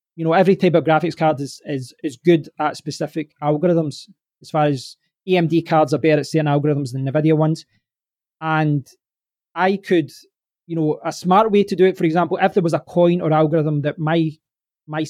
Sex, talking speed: male, 200 wpm